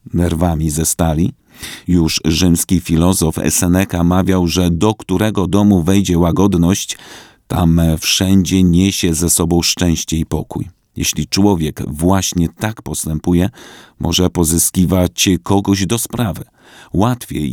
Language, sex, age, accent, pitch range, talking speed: Polish, male, 40-59, native, 85-100 Hz, 115 wpm